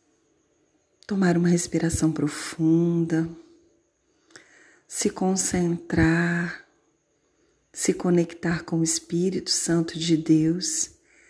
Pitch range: 165-210 Hz